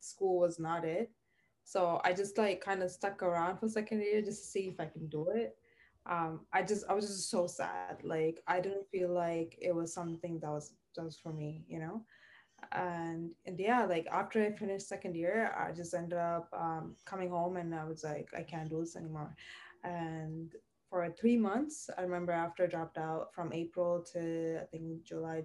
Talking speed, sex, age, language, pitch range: 205 wpm, female, 20-39, English, 165-195 Hz